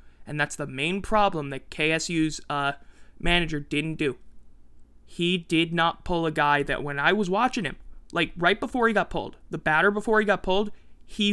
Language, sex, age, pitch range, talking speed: English, male, 20-39, 145-190 Hz, 190 wpm